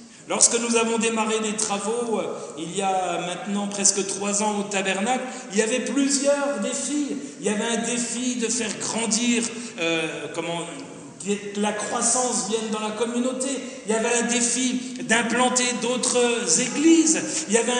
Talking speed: 160 wpm